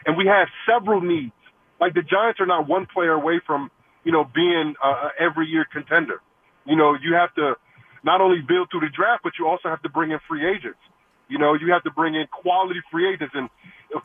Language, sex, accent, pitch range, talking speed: English, male, American, 155-185 Hz, 220 wpm